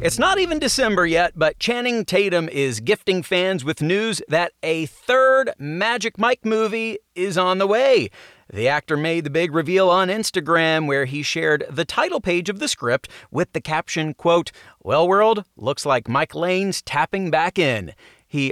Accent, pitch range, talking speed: American, 140-200 Hz, 175 wpm